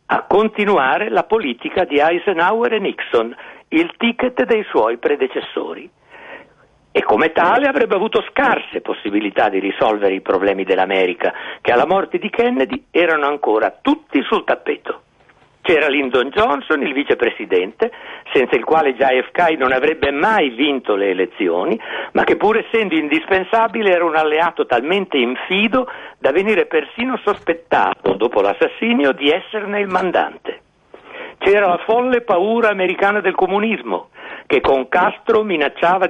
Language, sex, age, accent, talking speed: Italian, male, 60-79, native, 135 wpm